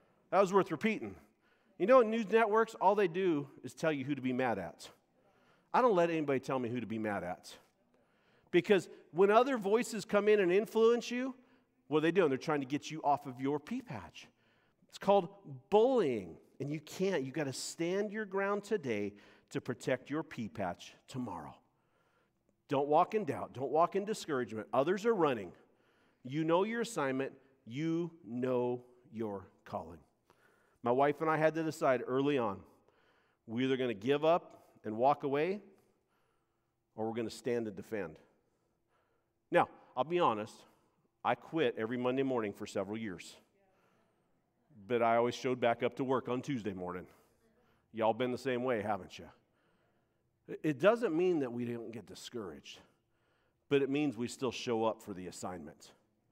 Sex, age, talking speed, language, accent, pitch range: male, 40-59, 175 wpm, English, American, 120-185 Hz